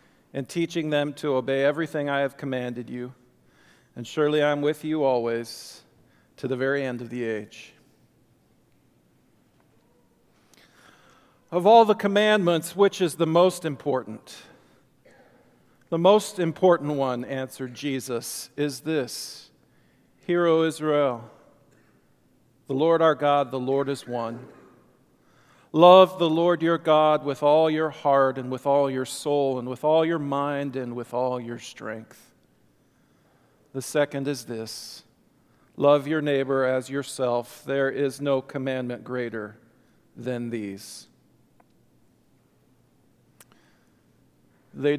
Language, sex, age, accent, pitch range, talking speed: English, male, 40-59, American, 125-155 Hz, 125 wpm